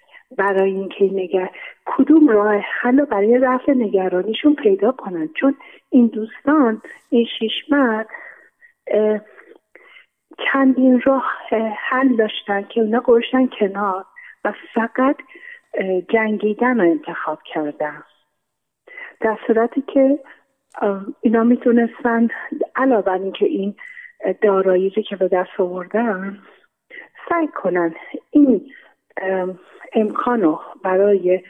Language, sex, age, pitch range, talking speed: Persian, female, 40-59, 185-285 Hz, 90 wpm